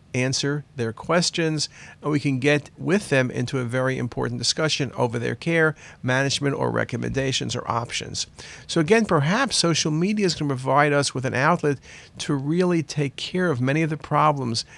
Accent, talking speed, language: American, 180 wpm, English